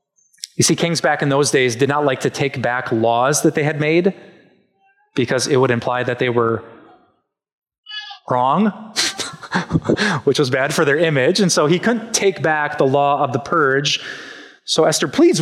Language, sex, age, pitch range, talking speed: English, male, 20-39, 145-205 Hz, 180 wpm